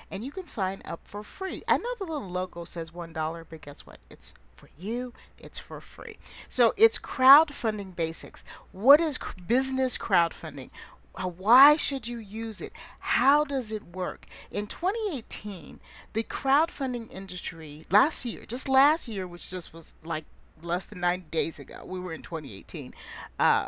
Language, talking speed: English, 160 wpm